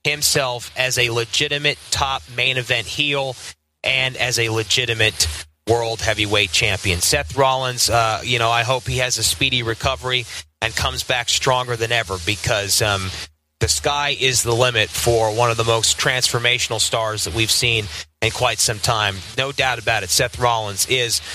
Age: 30-49